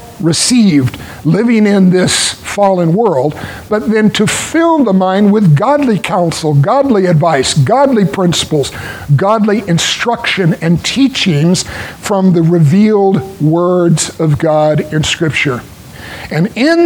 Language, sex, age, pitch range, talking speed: English, male, 60-79, 145-205 Hz, 115 wpm